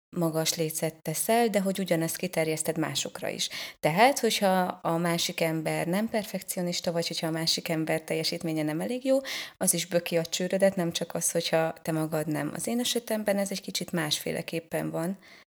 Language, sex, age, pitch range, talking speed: Hungarian, female, 20-39, 165-195 Hz, 175 wpm